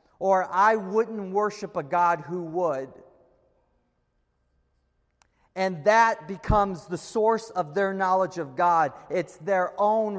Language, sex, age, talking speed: English, male, 40-59, 125 wpm